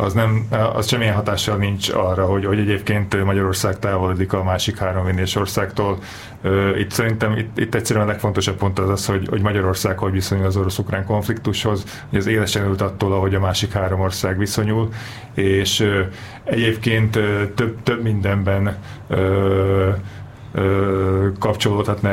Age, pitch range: 30-49, 100-110 Hz